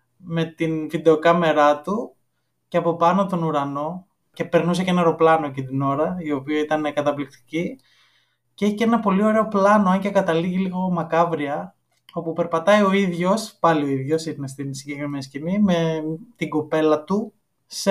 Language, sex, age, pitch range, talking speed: Greek, male, 20-39, 155-205 Hz, 165 wpm